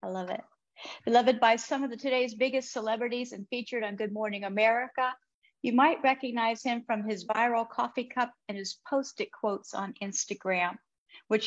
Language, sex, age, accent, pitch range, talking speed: English, female, 50-69, American, 205-250 Hz, 175 wpm